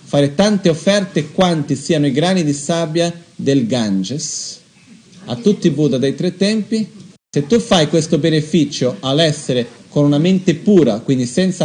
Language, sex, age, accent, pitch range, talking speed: Italian, male, 40-59, native, 140-185 Hz, 155 wpm